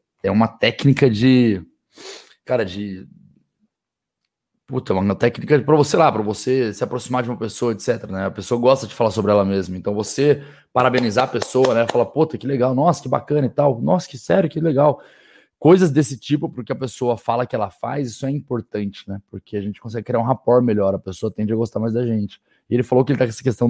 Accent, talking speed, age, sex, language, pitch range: Brazilian, 225 wpm, 20-39, male, Portuguese, 105-130 Hz